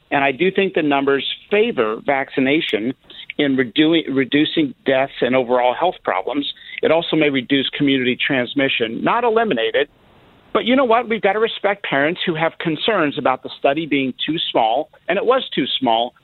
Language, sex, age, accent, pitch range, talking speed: English, male, 50-69, American, 130-170 Hz, 175 wpm